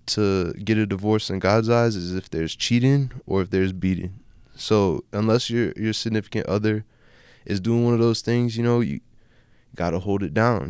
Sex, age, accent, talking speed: male, 20-39, American, 190 wpm